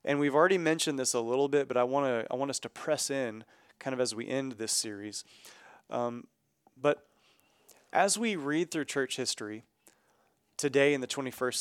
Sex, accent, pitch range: male, American, 115-140 Hz